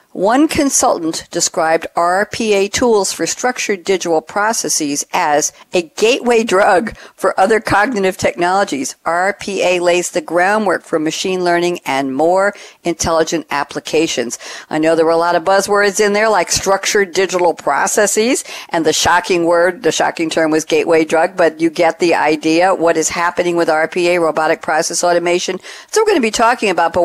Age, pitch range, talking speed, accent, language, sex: 60-79, 155-205 Hz, 160 wpm, American, English, female